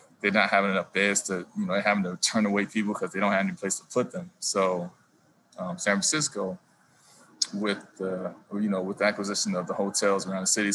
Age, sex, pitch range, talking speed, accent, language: 20-39, male, 95-105 Hz, 225 wpm, American, English